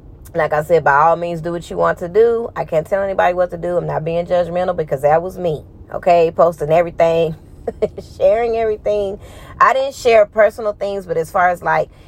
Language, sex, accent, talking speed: English, female, American, 210 wpm